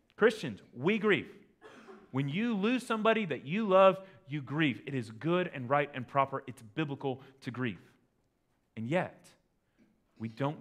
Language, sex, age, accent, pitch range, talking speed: English, male, 30-49, American, 110-135 Hz, 155 wpm